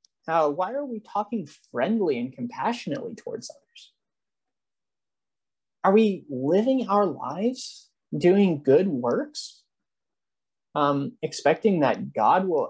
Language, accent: English, American